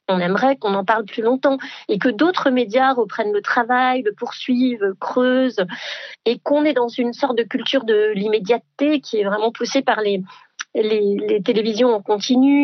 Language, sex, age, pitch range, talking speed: French, female, 40-59, 215-265 Hz, 180 wpm